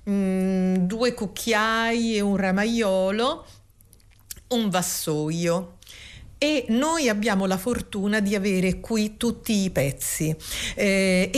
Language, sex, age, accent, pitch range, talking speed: Italian, female, 50-69, native, 170-225 Hz, 100 wpm